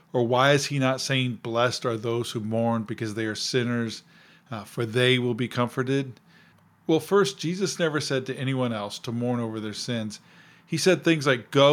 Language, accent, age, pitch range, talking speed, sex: English, American, 40-59, 120-160 Hz, 200 wpm, male